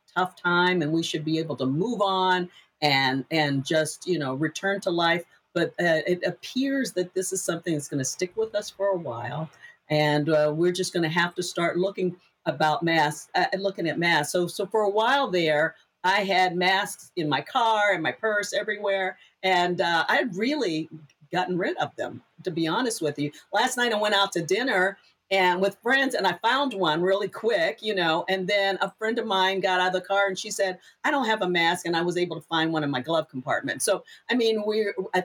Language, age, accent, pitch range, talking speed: English, 50-69, American, 165-200 Hz, 230 wpm